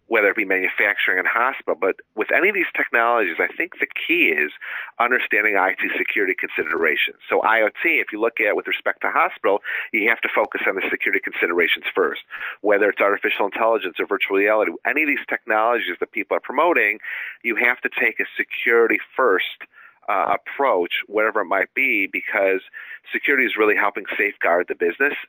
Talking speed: 180 wpm